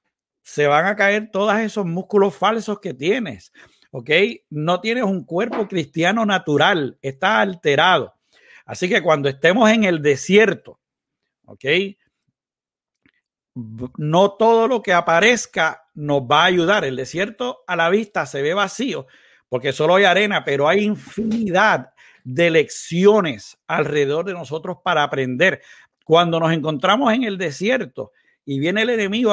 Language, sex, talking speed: Spanish, male, 140 wpm